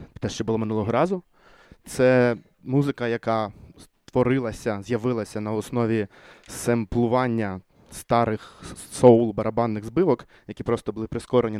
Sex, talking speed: male, 105 wpm